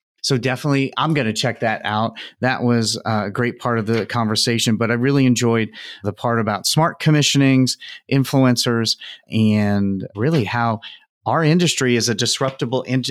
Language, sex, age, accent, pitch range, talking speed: English, male, 30-49, American, 120-155 Hz, 160 wpm